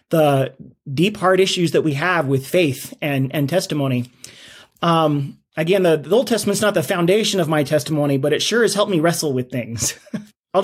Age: 30-49